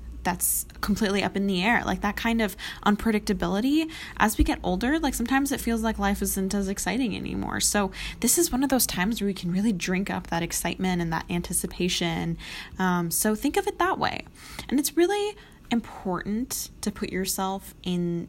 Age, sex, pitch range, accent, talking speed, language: 10-29, female, 175-230 Hz, American, 190 wpm, English